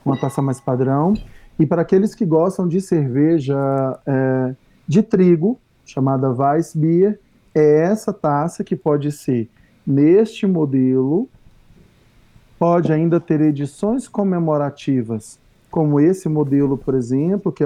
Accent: Brazilian